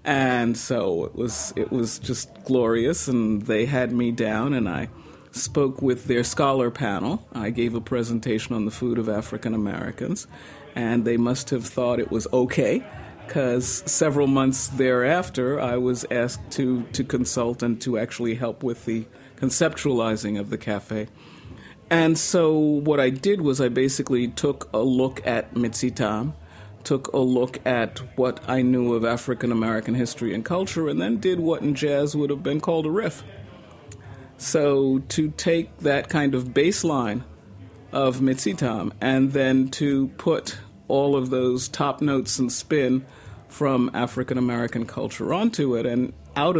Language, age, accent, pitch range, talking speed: English, 50-69, American, 115-140 Hz, 155 wpm